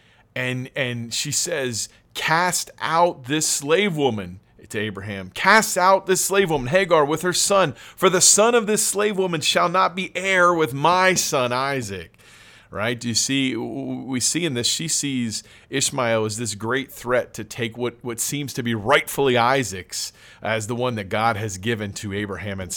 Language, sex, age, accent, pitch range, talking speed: English, male, 40-59, American, 110-160 Hz, 180 wpm